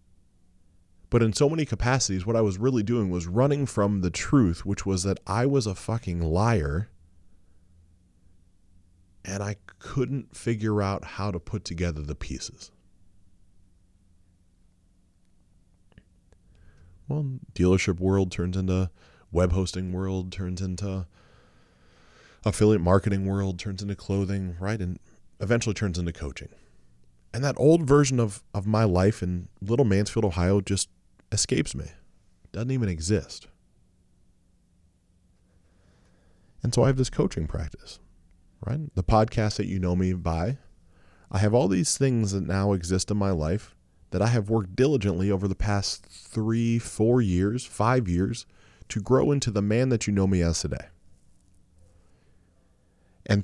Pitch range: 90-110 Hz